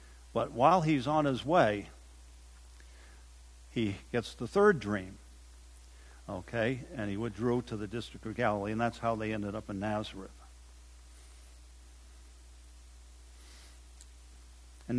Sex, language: male, English